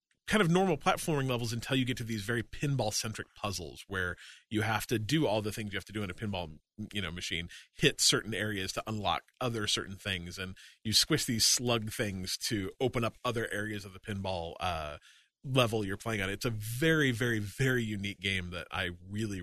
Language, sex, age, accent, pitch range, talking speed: English, male, 30-49, American, 100-130 Hz, 215 wpm